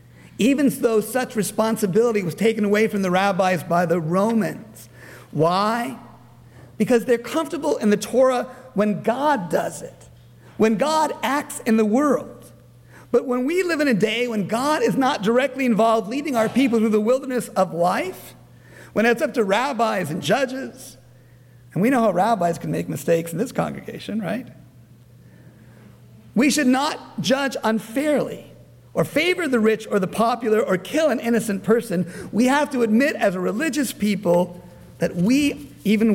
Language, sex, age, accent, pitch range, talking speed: English, male, 50-69, American, 145-235 Hz, 165 wpm